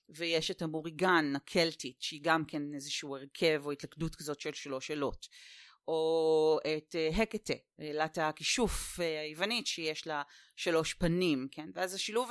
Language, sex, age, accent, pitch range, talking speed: Hebrew, female, 30-49, native, 155-200 Hz, 145 wpm